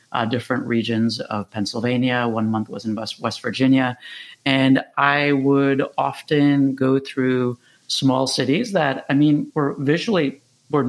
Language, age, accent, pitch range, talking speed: English, 40-59, American, 120-140 Hz, 140 wpm